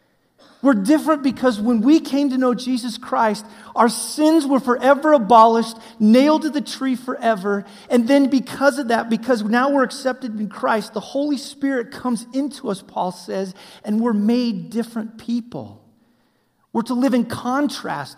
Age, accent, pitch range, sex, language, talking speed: 40-59, American, 200-250 Hz, male, English, 160 wpm